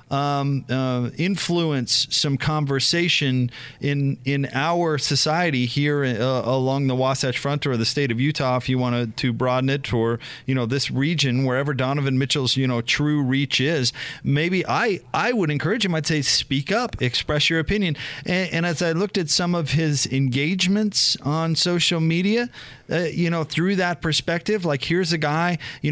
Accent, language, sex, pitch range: American, English, male, 130-165 Hz